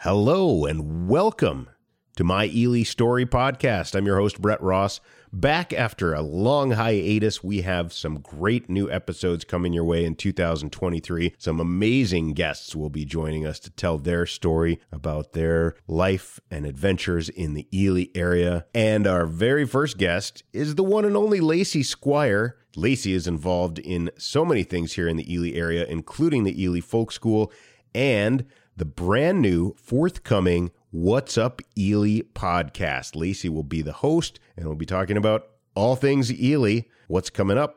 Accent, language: American, English